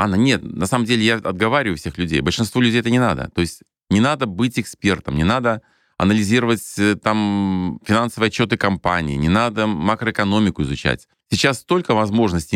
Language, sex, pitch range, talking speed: Russian, male, 90-120 Hz, 160 wpm